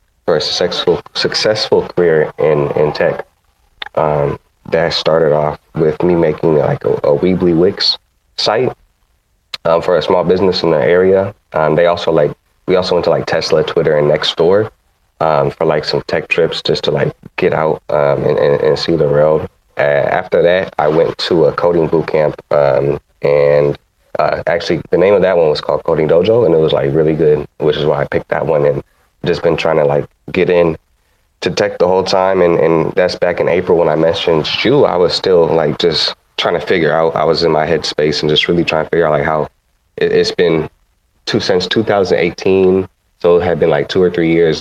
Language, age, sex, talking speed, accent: English, 30-49, male, 210 wpm, American